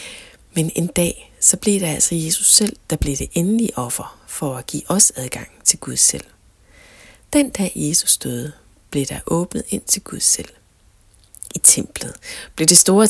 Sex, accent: female, native